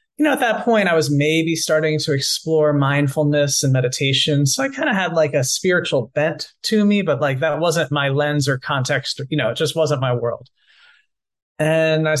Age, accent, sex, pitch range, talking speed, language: 30-49, American, male, 130-160 Hz, 205 wpm, English